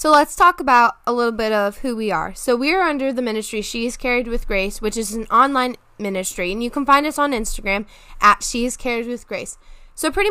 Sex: female